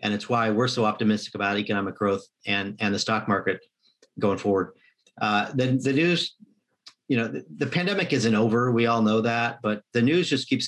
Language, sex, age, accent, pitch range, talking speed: English, male, 40-59, American, 105-130 Hz, 200 wpm